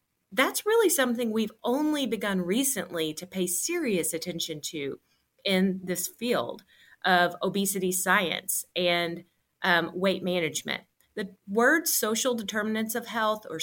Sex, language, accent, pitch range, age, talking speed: female, English, American, 175-225 Hz, 30-49, 130 wpm